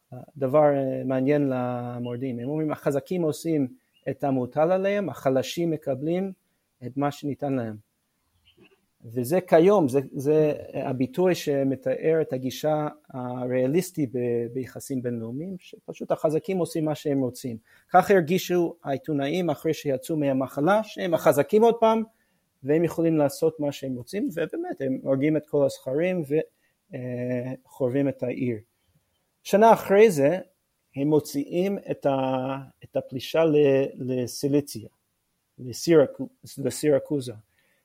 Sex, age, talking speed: male, 30-49, 110 wpm